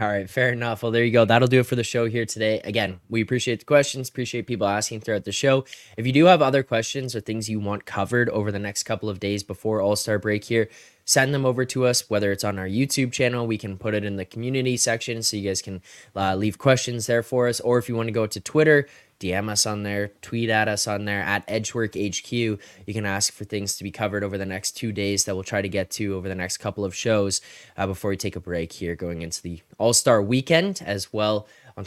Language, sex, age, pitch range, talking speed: English, male, 10-29, 100-120 Hz, 255 wpm